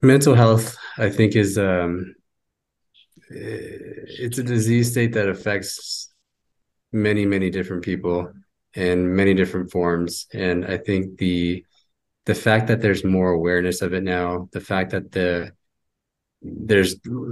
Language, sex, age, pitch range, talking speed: English, male, 20-39, 90-100 Hz, 130 wpm